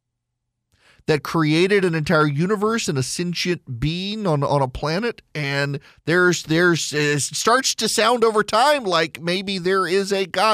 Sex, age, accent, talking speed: male, 40-59, American, 160 wpm